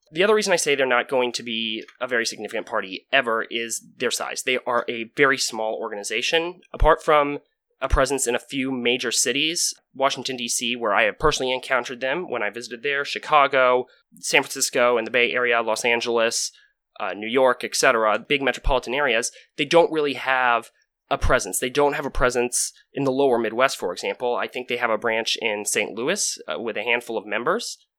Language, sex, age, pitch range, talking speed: English, male, 20-39, 120-150 Hz, 200 wpm